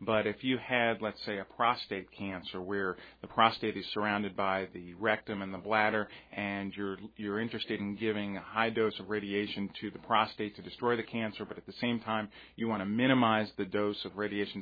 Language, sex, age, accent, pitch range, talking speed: English, male, 40-59, American, 95-110 Hz, 210 wpm